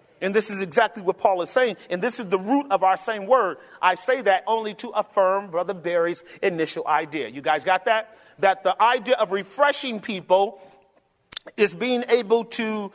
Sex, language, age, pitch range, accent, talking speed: male, English, 40-59, 195-265 Hz, American, 190 wpm